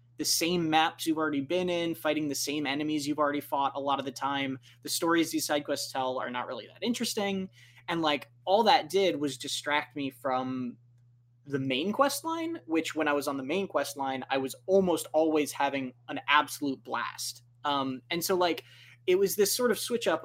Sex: male